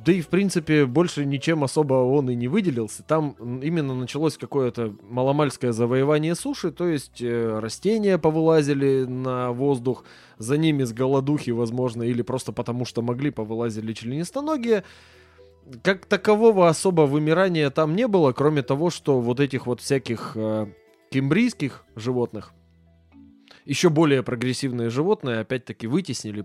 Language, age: Russian, 20-39